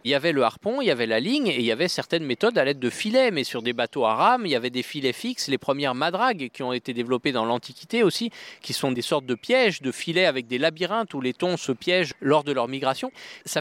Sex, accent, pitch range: male, French, 135-180 Hz